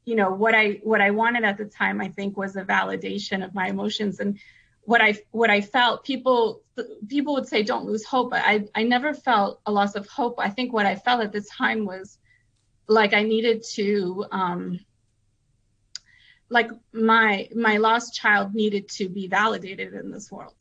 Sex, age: female, 30-49